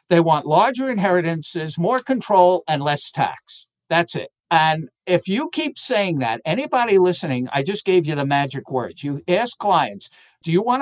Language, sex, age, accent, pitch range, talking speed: English, male, 60-79, American, 145-210 Hz, 175 wpm